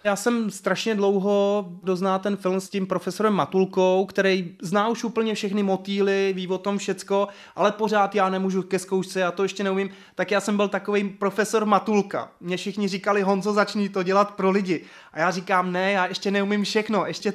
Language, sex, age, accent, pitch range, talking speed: Czech, male, 20-39, native, 165-195 Hz, 195 wpm